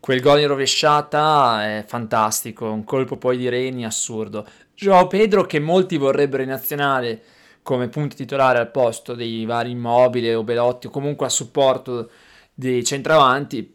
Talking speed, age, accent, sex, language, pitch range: 155 wpm, 20-39, native, male, Italian, 115-145 Hz